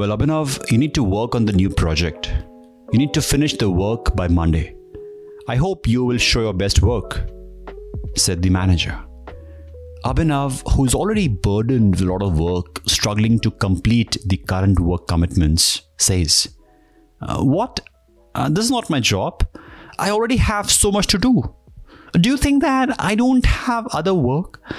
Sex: male